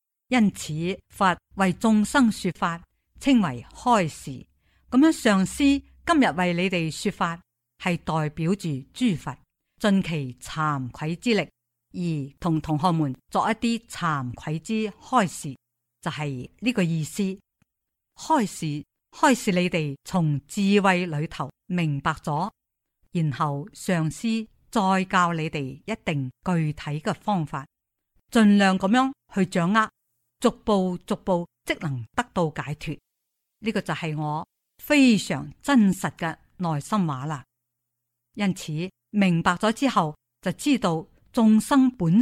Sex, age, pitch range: female, 50-69, 150-210 Hz